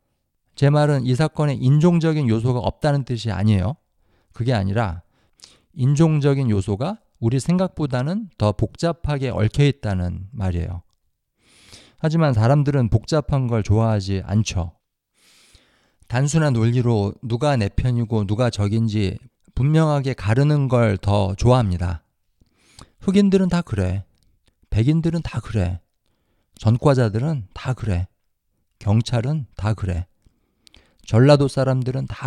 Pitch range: 100-140 Hz